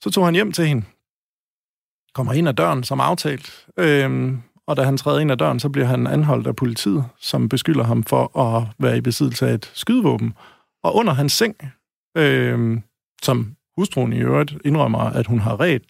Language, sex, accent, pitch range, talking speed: Danish, male, native, 125-165 Hz, 195 wpm